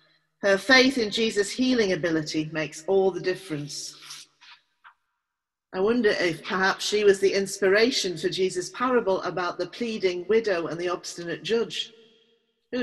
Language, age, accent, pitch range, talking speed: English, 40-59, British, 170-240 Hz, 140 wpm